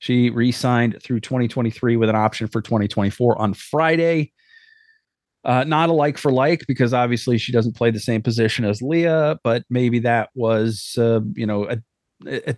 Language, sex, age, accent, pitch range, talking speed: English, male, 40-59, American, 115-145 Hz, 165 wpm